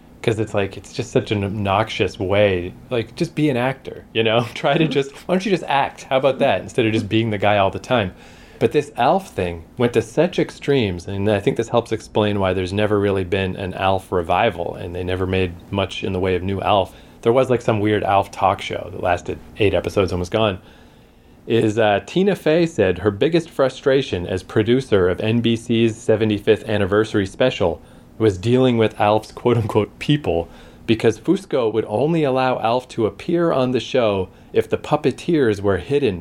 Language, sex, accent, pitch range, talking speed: English, male, American, 100-125 Hz, 200 wpm